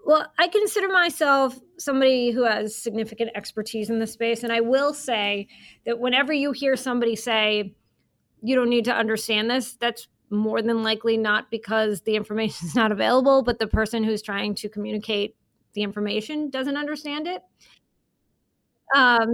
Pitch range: 210-245 Hz